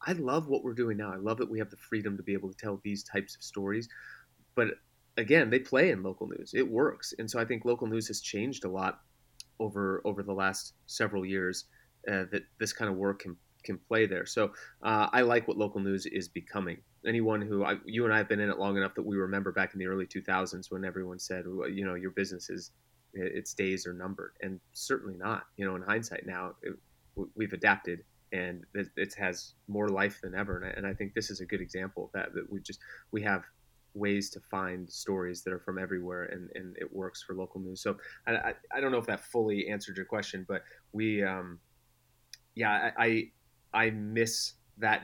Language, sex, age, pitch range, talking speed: English, male, 30-49, 95-110 Hz, 225 wpm